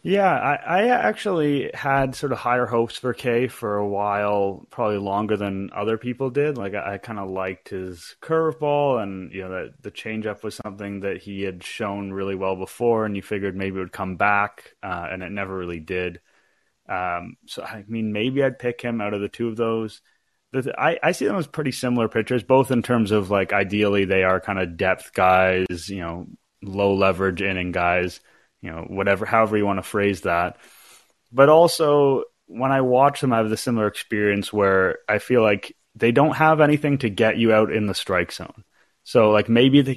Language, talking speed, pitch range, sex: English, 205 wpm, 95-125 Hz, male